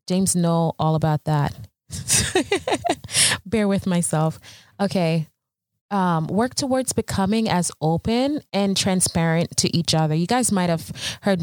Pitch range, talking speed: 155-195 Hz, 125 wpm